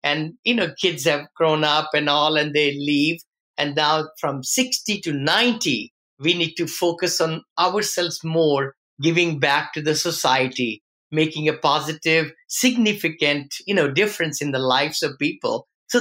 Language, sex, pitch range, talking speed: English, male, 150-180 Hz, 160 wpm